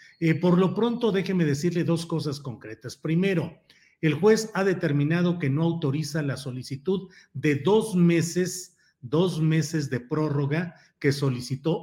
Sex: male